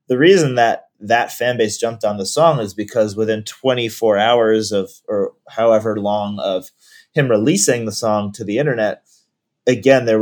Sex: male